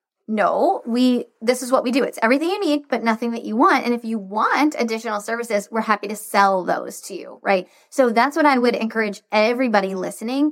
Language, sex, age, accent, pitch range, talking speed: English, female, 20-39, American, 200-255 Hz, 210 wpm